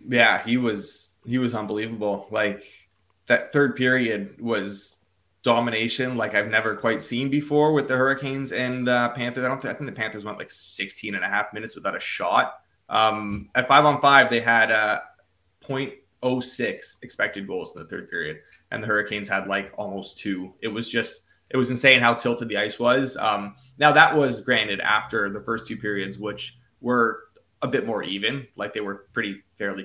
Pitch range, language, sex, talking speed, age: 100-125 Hz, English, male, 195 wpm, 20-39